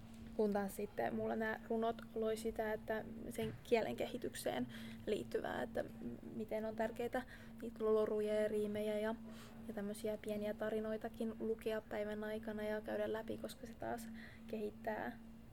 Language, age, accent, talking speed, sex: Finnish, 20-39, native, 140 wpm, female